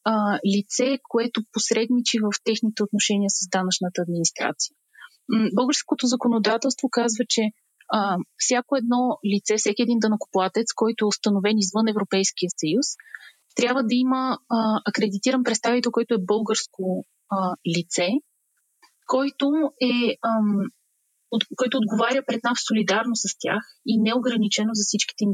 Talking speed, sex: 125 wpm, female